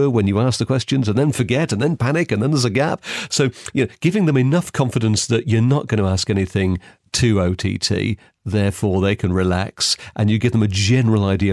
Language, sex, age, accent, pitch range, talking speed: English, male, 40-59, British, 95-120 Hz, 225 wpm